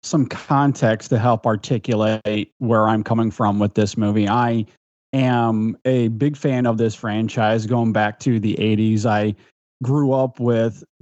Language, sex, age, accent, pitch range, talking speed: English, male, 30-49, American, 110-135 Hz, 160 wpm